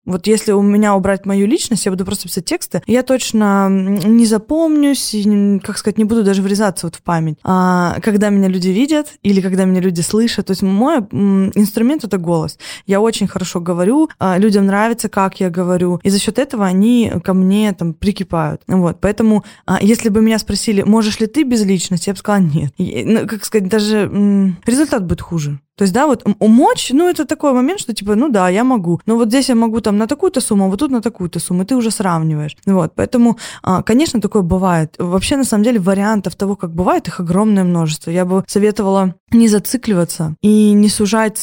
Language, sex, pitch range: Russian, female, 185-220 Hz